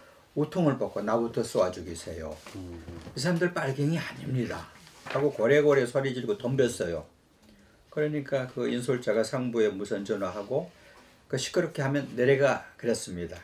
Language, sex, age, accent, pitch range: Korean, male, 50-69, native, 115-150 Hz